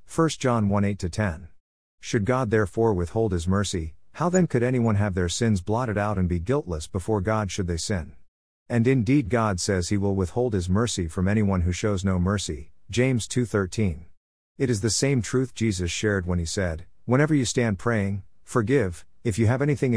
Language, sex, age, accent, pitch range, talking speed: English, male, 50-69, American, 90-115 Hz, 190 wpm